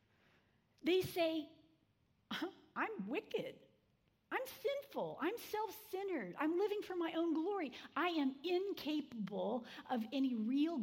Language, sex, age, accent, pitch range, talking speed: English, female, 50-69, American, 210-315 Hz, 110 wpm